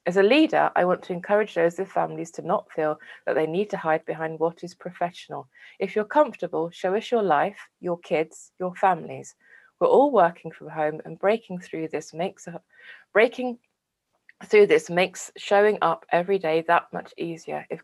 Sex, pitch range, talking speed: female, 150-195 Hz, 185 wpm